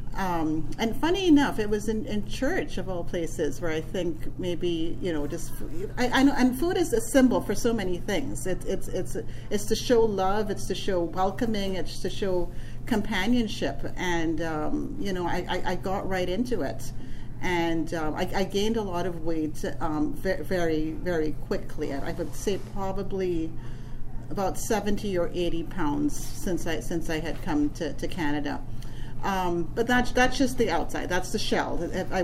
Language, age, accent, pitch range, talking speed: English, 40-59, American, 160-210 Hz, 190 wpm